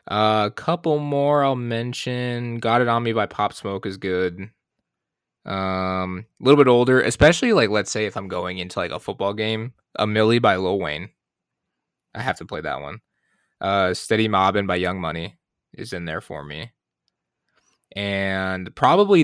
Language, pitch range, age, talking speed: English, 90-115 Hz, 20-39, 175 wpm